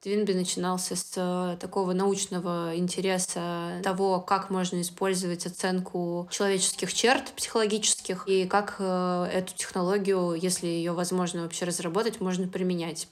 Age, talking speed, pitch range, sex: 20-39, 115 wpm, 175-195 Hz, female